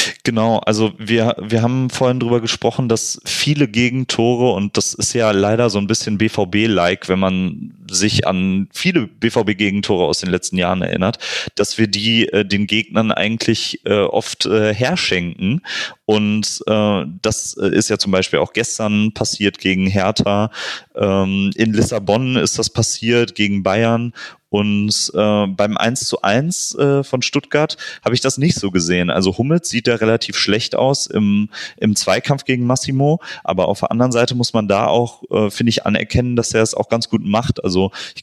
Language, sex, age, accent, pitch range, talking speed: German, male, 30-49, German, 105-120 Hz, 170 wpm